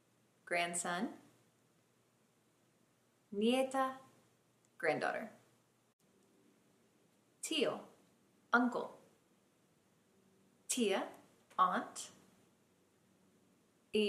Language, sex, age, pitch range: Spanish, female, 30-49, 185-225 Hz